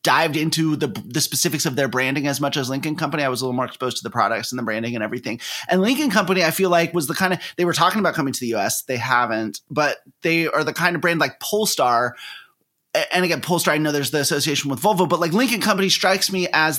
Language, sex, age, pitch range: English, male, 30-49, 145-195 Hz